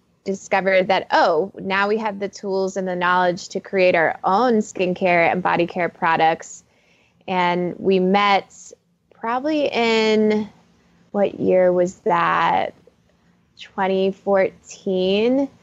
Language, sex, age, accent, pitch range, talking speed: English, female, 20-39, American, 180-205 Hz, 115 wpm